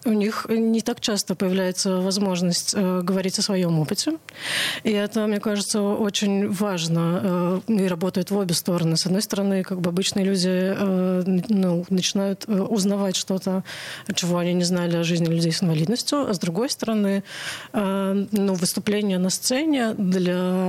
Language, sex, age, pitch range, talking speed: Russian, female, 30-49, 185-215 Hz, 160 wpm